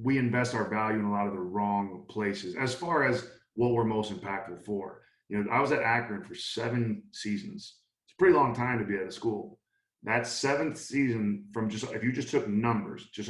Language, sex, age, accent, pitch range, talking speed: English, male, 20-39, American, 100-120 Hz, 220 wpm